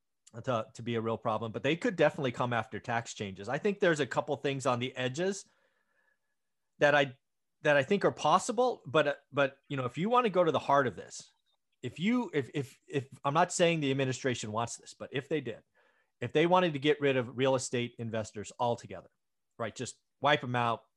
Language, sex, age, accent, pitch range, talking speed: English, male, 30-49, American, 120-155 Hz, 220 wpm